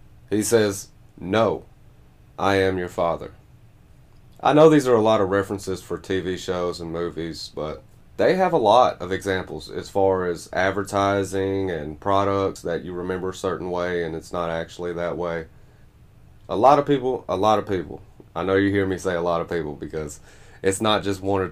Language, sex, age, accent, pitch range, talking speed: English, male, 30-49, American, 90-105 Hz, 190 wpm